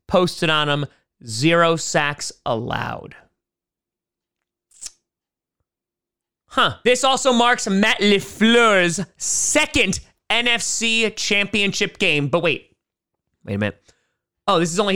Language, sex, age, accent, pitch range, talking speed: English, male, 30-49, American, 145-195 Hz, 100 wpm